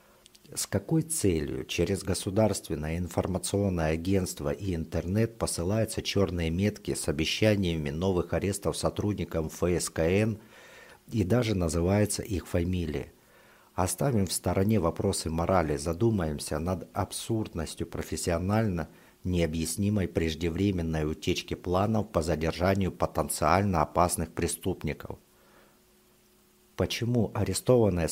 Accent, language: native, Russian